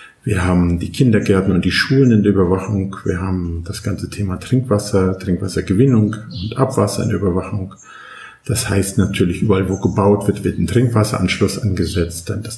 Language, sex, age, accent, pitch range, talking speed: German, male, 50-69, German, 95-115 Hz, 165 wpm